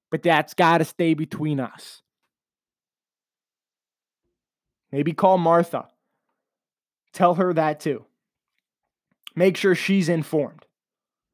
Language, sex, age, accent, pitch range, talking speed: English, male, 20-39, American, 150-195 Hz, 95 wpm